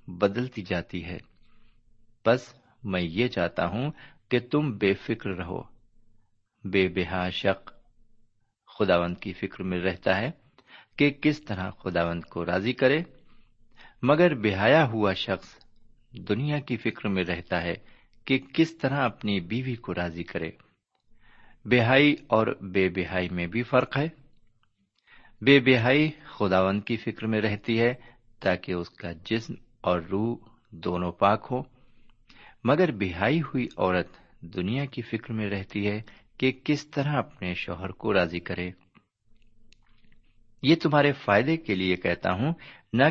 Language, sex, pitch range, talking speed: Urdu, male, 95-130 Hz, 135 wpm